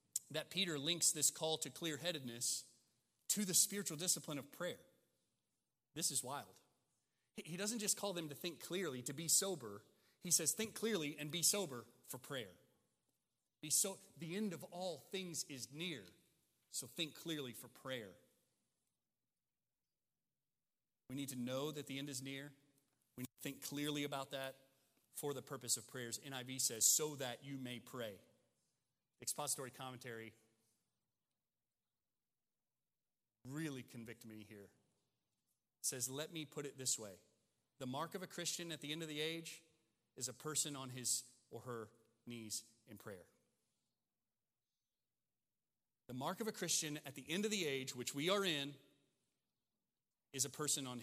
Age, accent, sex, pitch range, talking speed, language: 30-49, American, male, 120-160 Hz, 155 wpm, English